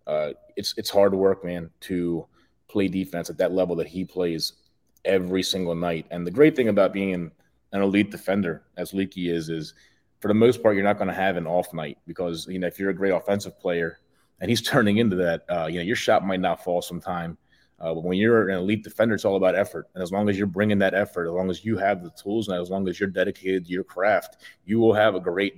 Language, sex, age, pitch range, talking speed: English, male, 30-49, 90-100 Hz, 250 wpm